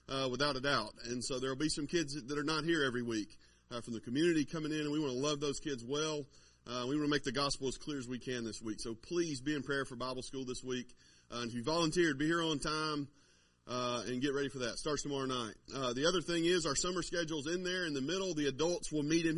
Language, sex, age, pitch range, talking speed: English, male, 30-49, 125-155 Hz, 280 wpm